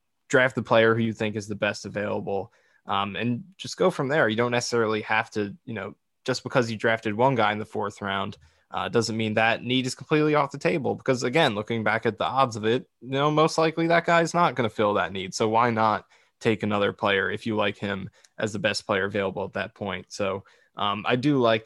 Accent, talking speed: American, 245 wpm